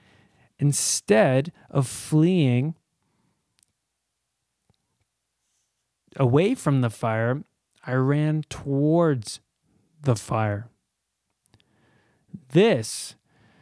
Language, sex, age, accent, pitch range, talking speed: English, male, 20-39, American, 125-155 Hz, 55 wpm